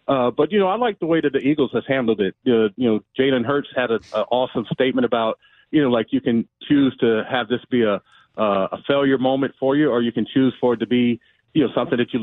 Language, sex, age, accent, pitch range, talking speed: English, male, 40-59, American, 120-145 Hz, 270 wpm